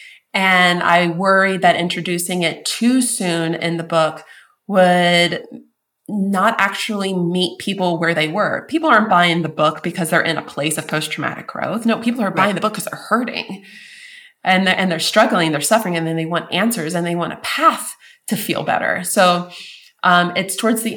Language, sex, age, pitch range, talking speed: English, female, 20-39, 170-215 Hz, 190 wpm